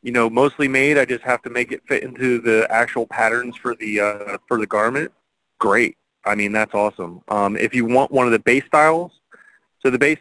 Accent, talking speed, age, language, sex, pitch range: American, 225 wpm, 30-49, English, male, 115-155 Hz